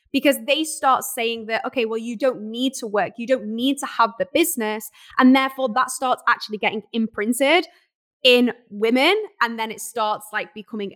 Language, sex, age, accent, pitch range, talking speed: English, female, 10-29, British, 225-290 Hz, 185 wpm